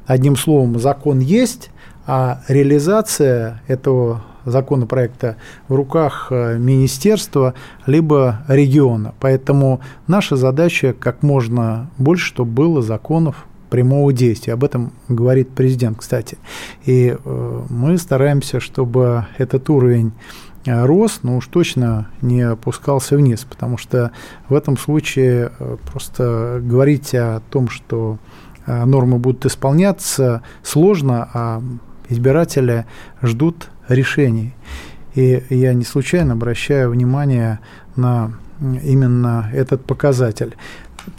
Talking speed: 105 wpm